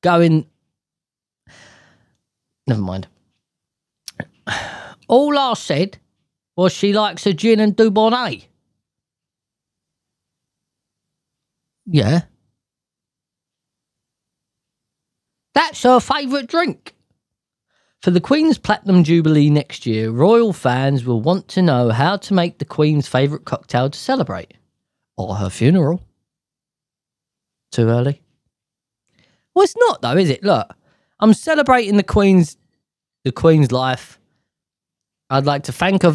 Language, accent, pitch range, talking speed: English, British, 130-205 Hz, 105 wpm